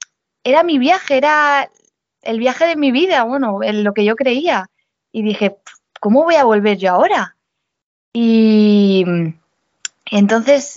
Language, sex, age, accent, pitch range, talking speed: Spanish, female, 20-39, Spanish, 200-255 Hz, 140 wpm